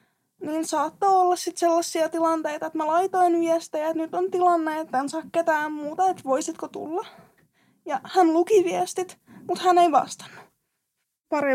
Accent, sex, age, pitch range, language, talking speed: native, female, 20-39, 295-360 Hz, Finnish, 160 wpm